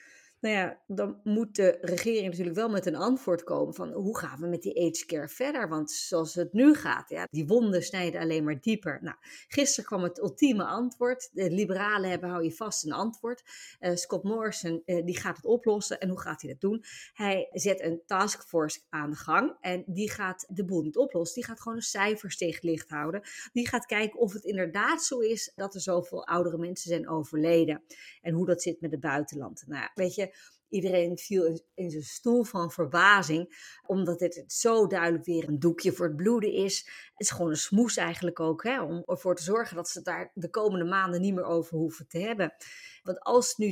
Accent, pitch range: Dutch, 170-220 Hz